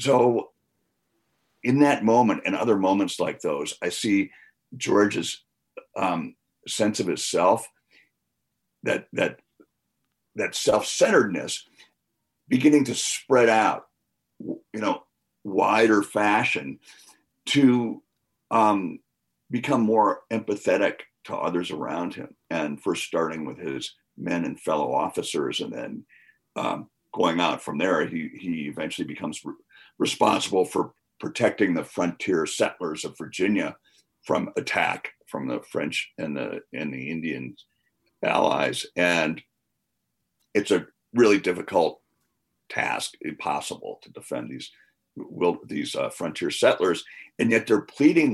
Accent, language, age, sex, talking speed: American, English, 50-69, male, 120 wpm